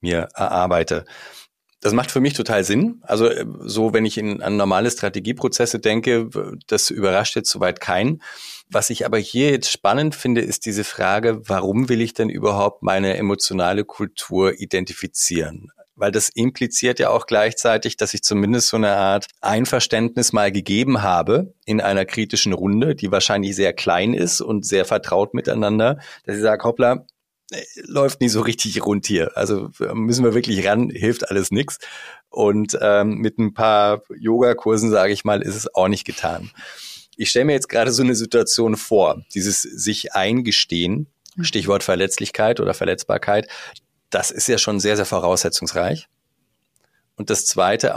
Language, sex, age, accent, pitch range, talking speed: German, male, 40-59, German, 100-120 Hz, 160 wpm